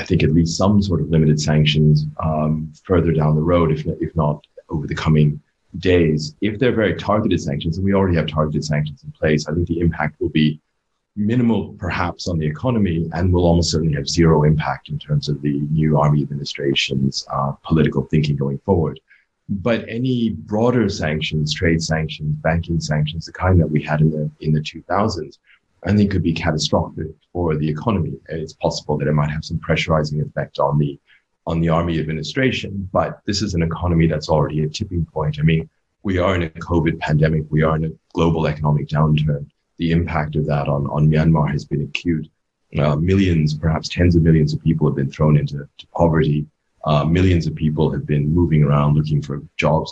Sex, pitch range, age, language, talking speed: male, 75-85 Hz, 30-49, English, 195 wpm